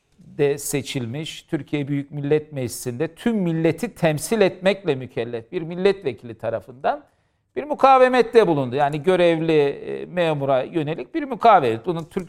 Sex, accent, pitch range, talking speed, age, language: male, native, 145-200 Hz, 120 wpm, 50-69, Turkish